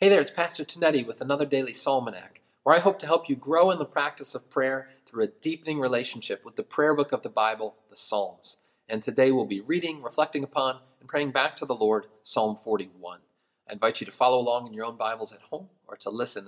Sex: male